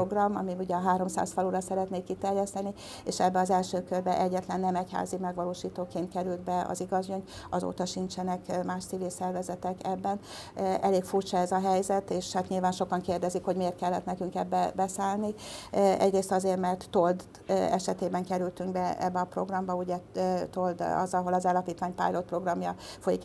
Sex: female